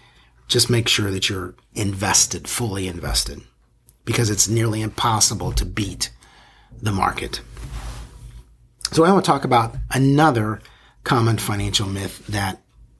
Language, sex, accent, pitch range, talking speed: English, male, American, 100-125 Hz, 125 wpm